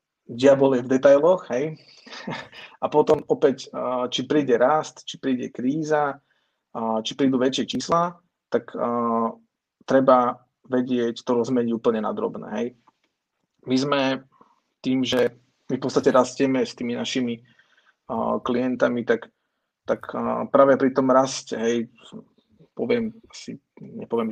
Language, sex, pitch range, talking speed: Slovak, male, 120-150 Hz, 115 wpm